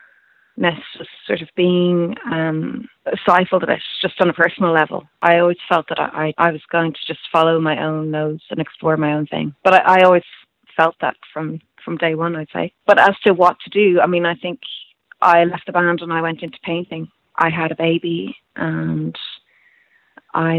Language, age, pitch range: English, 30-49, 165-190 Hz